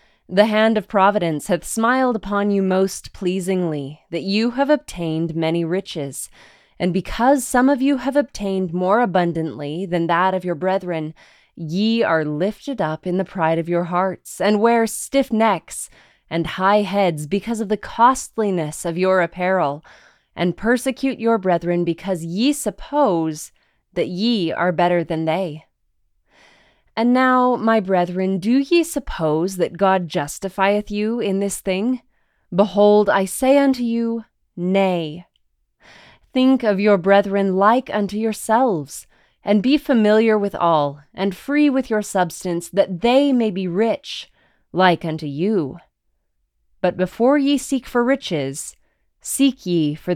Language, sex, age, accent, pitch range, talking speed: English, female, 20-39, American, 175-230 Hz, 145 wpm